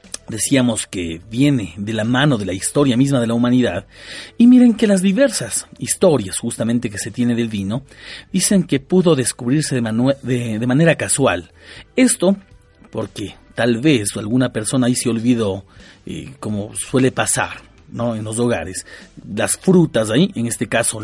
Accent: Mexican